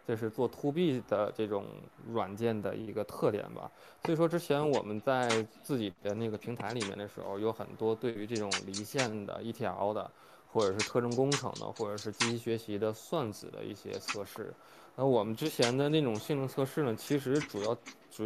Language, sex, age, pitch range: Chinese, male, 20-39, 105-130 Hz